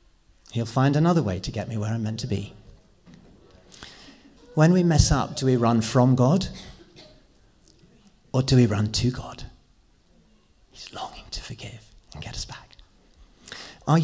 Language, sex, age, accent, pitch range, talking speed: English, male, 40-59, British, 105-125 Hz, 155 wpm